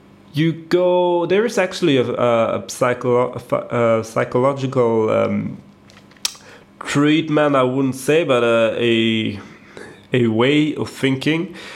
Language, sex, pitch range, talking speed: English, male, 115-145 Hz, 120 wpm